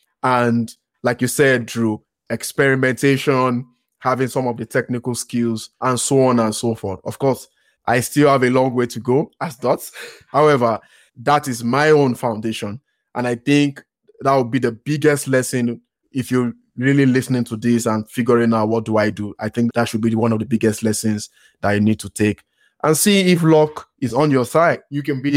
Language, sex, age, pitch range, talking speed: English, male, 20-39, 115-135 Hz, 200 wpm